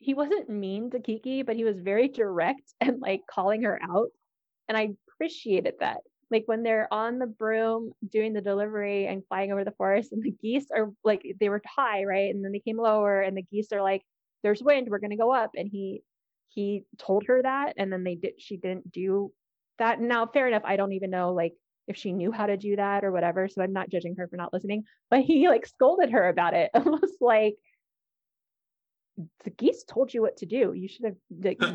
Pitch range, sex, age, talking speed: 200-260 Hz, female, 20-39, 225 wpm